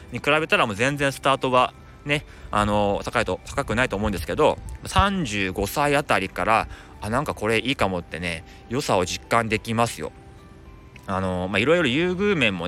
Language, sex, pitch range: Japanese, male, 95-140 Hz